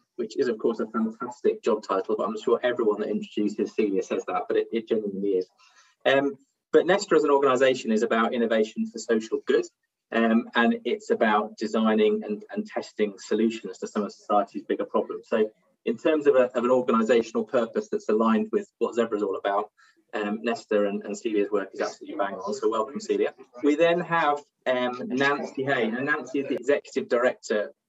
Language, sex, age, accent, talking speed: English, male, 20-39, British, 195 wpm